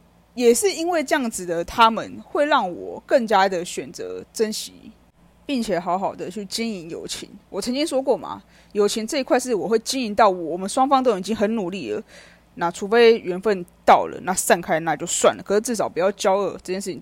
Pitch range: 195-260 Hz